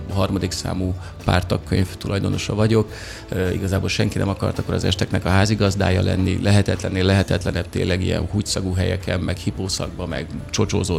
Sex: male